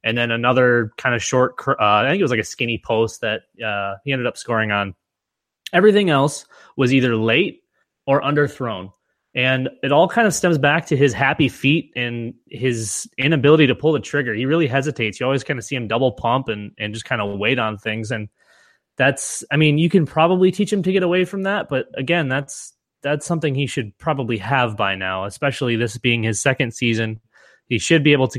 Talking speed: 220 wpm